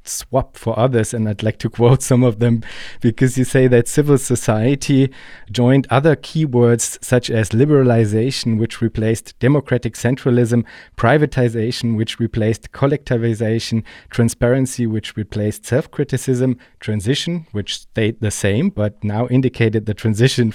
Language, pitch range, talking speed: German, 110-130 Hz, 130 wpm